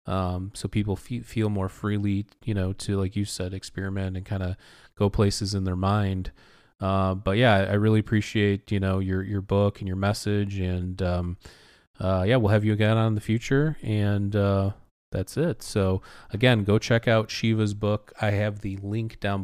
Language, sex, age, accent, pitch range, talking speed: English, male, 30-49, American, 100-115 Hz, 195 wpm